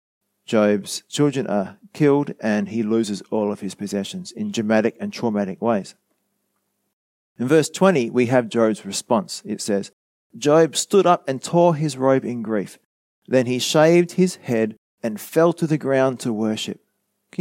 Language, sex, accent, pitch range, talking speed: English, male, Australian, 110-160 Hz, 160 wpm